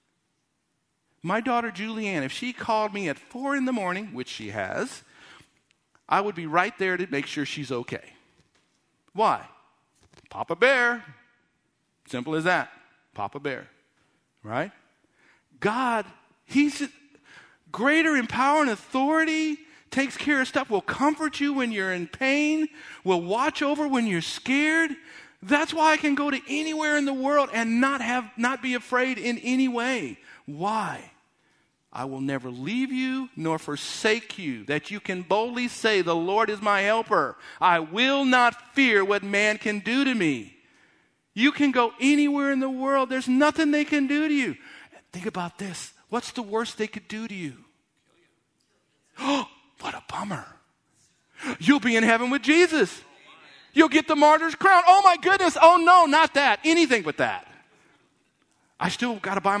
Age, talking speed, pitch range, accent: 50-69, 160 wpm, 200-290 Hz, American